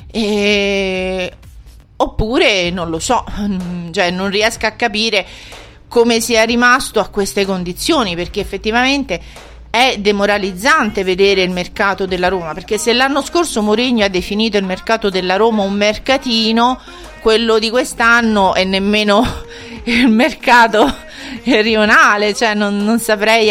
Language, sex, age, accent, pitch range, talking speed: Italian, female, 40-59, native, 180-225 Hz, 130 wpm